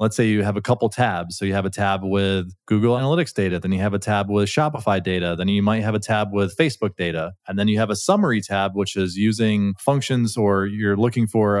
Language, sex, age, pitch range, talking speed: English, male, 20-39, 95-110 Hz, 250 wpm